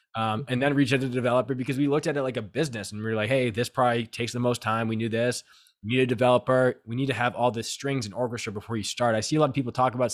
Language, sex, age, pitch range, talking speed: English, male, 20-39, 110-135 Hz, 315 wpm